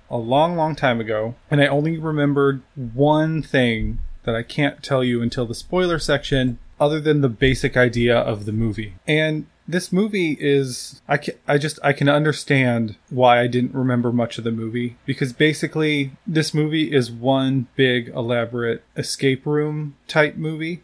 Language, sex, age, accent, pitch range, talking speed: English, male, 20-39, American, 125-150 Hz, 170 wpm